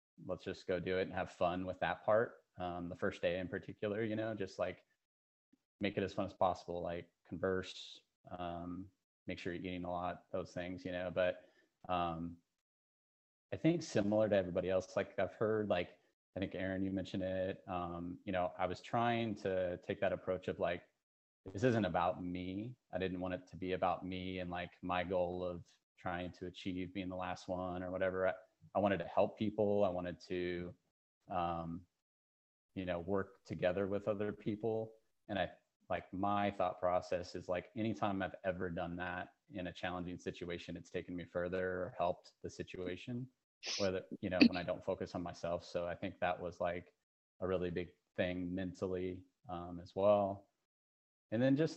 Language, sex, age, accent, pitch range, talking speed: English, male, 30-49, American, 90-95 Hz, 190 wpm